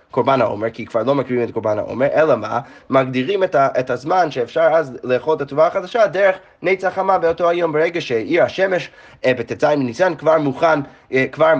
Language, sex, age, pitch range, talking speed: Hebrew, male, 20-39, 125-170 Hz, 190 wpm